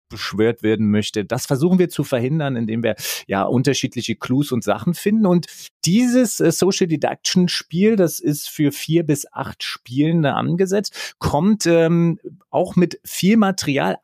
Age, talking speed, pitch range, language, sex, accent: 30-49, 140 wpm, 115-165 Hz, German, male, German